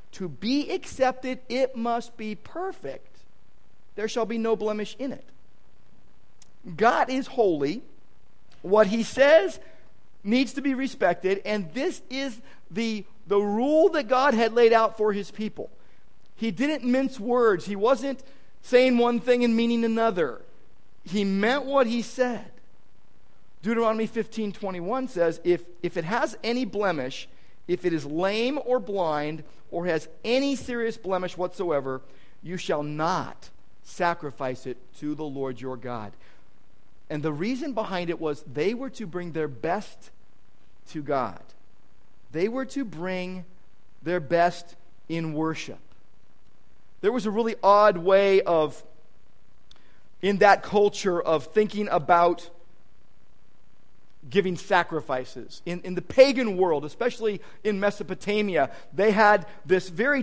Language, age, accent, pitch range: English, 50-69, American, 175-235 Hz